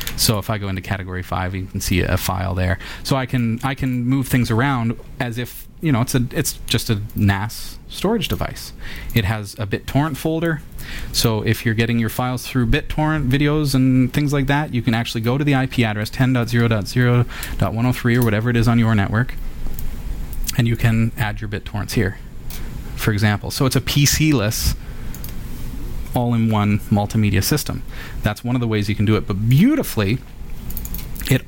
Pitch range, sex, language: 105-130 Hz, male, English